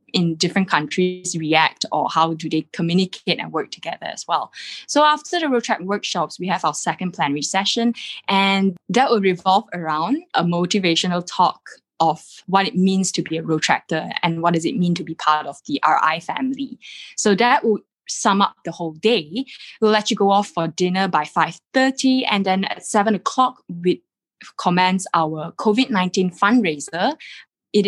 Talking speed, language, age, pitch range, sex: 180 wpm, English, 20-39, 170-220 Hz, female